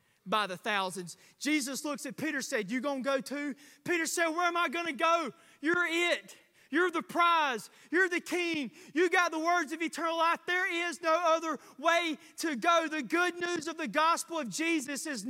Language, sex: English, male